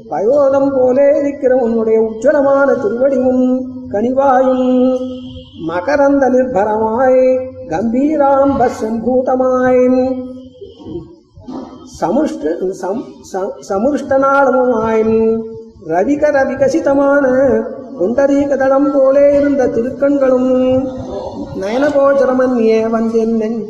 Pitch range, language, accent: 230-275 Hz, Tamil, native